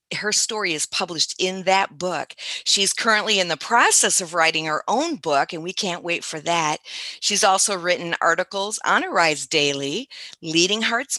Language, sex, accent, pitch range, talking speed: English, female, American, 160-205 Hz, 170 wpm